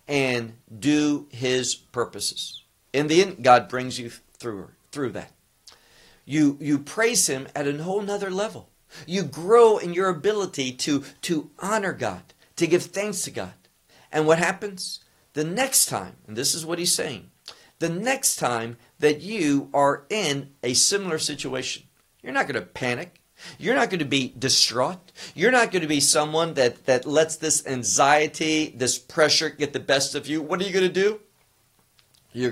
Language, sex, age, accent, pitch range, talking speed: English, male, 50-69, American, 125-180 Hz, 175 wpm